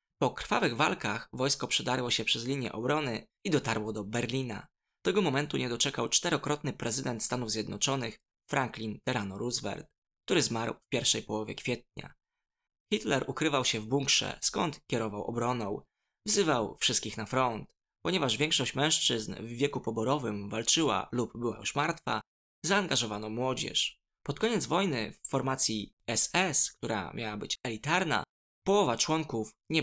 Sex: male